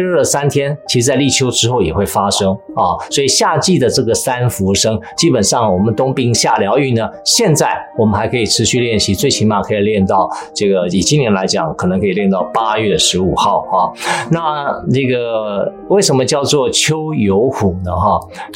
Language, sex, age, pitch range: Chinese, male, 50-69, 105-145 Hz